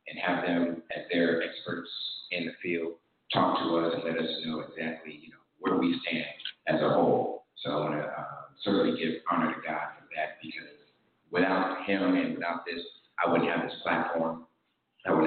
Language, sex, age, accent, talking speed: English, male, 40-59, American, 195 wpm